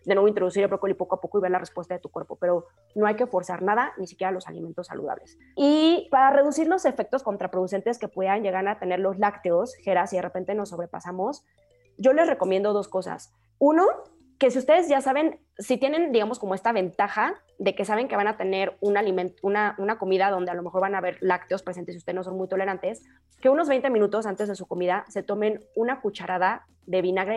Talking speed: 225 wpm